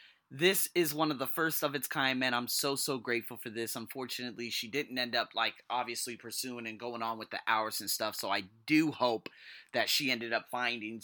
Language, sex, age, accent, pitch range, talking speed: English, male, 20-39, American, 120-150 Hz, 225 wpm